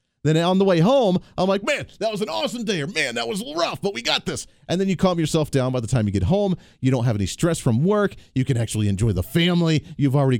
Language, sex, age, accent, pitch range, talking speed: English, male, 40-59, American, 120-175 Hz, 290 wpm